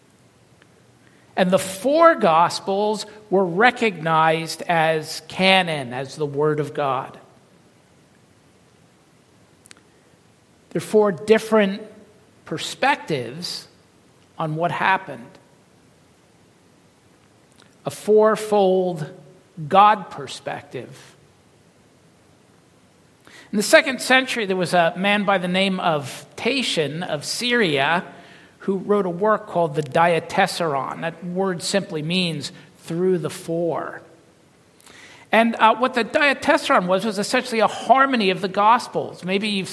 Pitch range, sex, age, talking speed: 165-205 Hz, male, 50-69, 105 wpm